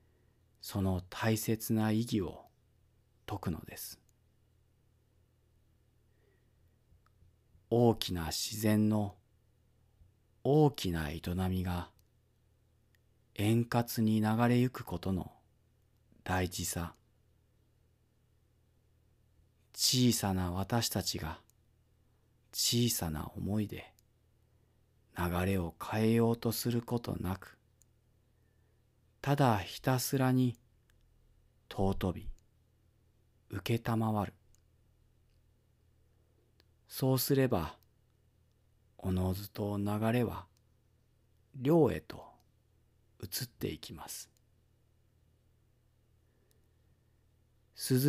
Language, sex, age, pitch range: Japanese, male, 40-59, 100-115 Hz